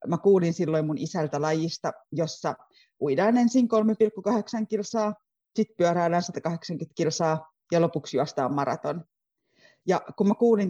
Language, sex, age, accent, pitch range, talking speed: Finnish, female, 30-49, native, 165-220 Hz, 130 wpm